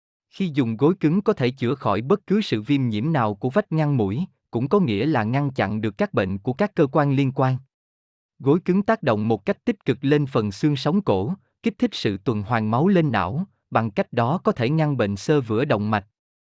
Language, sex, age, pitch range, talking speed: Vietnamese, male, 20-39, 110-155 Hz, 235 wpm